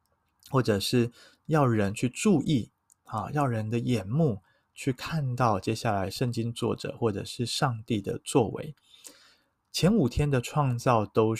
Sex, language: male, Chinese